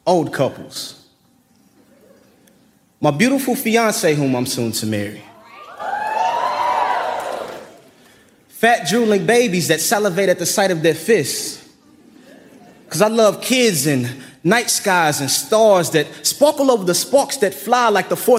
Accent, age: American, 20-39